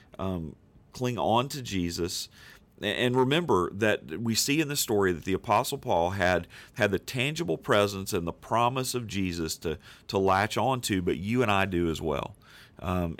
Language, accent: English, American